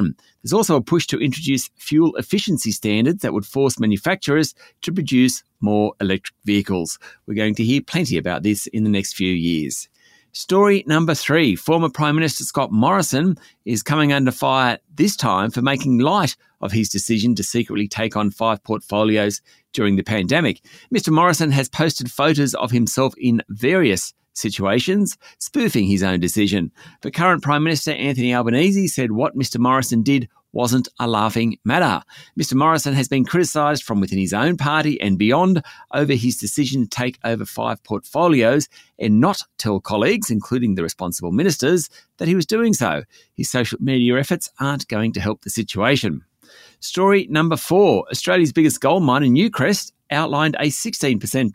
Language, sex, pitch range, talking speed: English, male, 105-155 Hz, 165 wpm